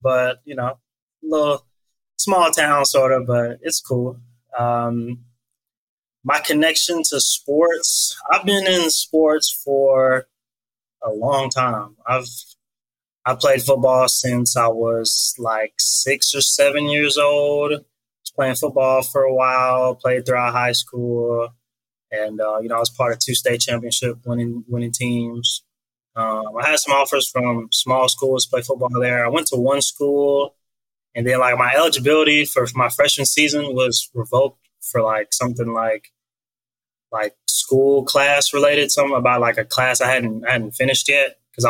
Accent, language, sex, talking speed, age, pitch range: American, English, male, 160 wpm, 20-39, 120-135 Hz